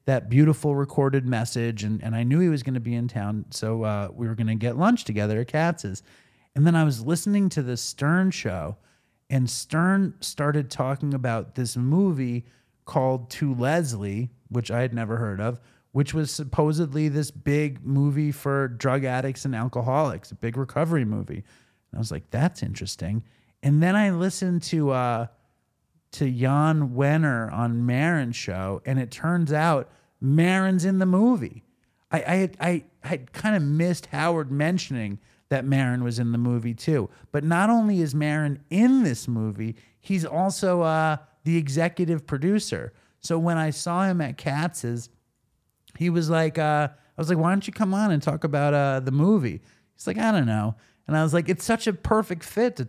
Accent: American